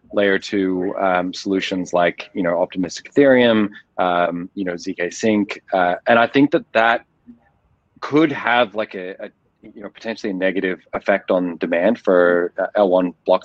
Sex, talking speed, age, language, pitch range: male, 160 wpm, 20-39, English, 90-105 Hz